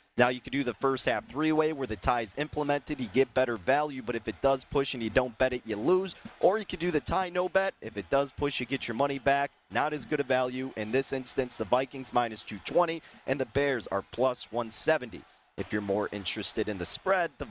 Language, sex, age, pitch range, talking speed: English, male, 30-49, 120-145 Hz, 245 wpm